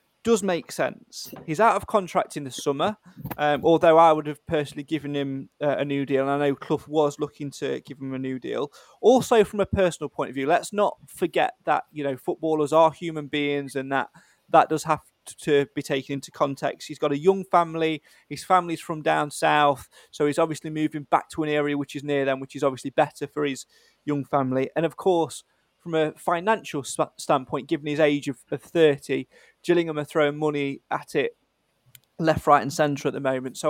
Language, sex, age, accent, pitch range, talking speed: English, male, 20-39, British, 140-175 Hz, 210 wpm